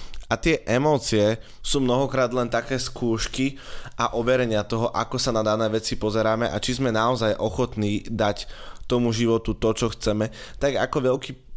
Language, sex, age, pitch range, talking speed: Slovak, male, 20-39, 110-130 Hz, 160 wpm